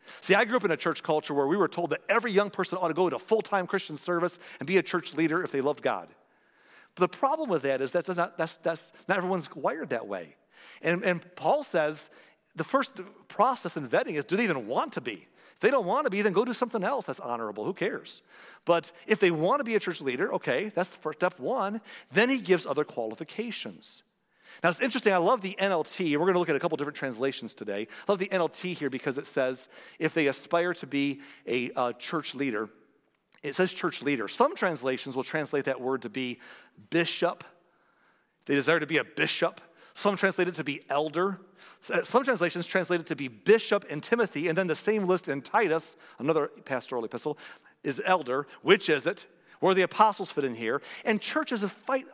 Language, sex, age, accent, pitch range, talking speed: English, male, 40-59, American, 145-195 Hz, 220 wpm